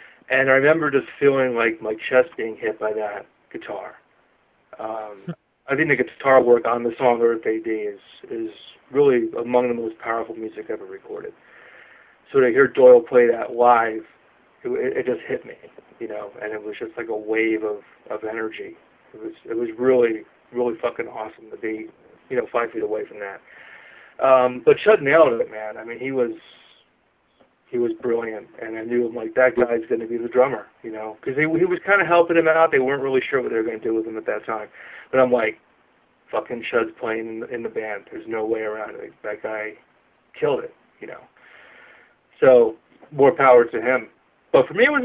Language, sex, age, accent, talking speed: English, male, 30-49, American, 210 wpm